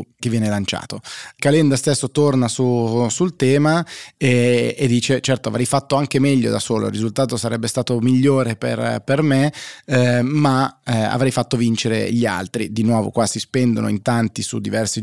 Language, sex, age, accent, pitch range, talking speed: Italian, male, 20-39, native, 110-130 Hz, 170 wpm